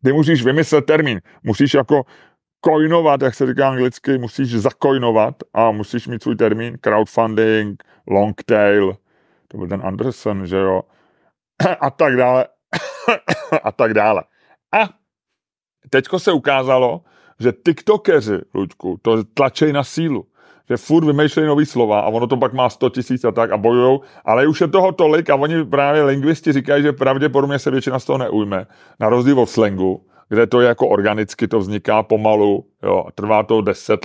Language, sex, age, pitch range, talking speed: Czech, male, 30-49, 110-140 Hz, 165 wpm